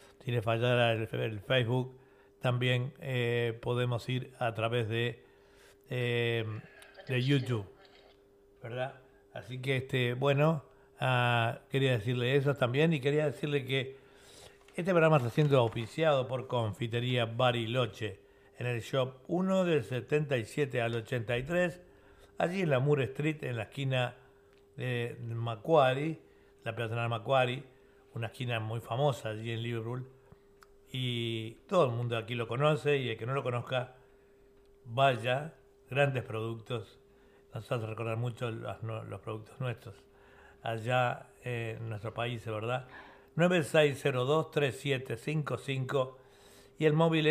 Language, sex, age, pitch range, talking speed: Spanish, male, 60-79, 115-135 Hz, 125 wpm